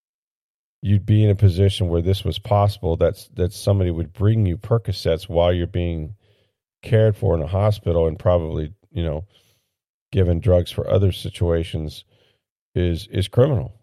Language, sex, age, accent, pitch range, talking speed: English, male, 40-59, American, 80-105 Hz, 155 wpm